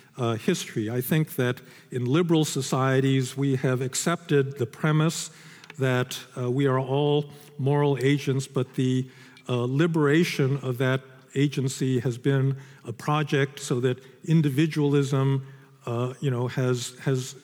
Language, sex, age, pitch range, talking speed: Dutch, male, 50-69, 130-145 Hz, 135 wpm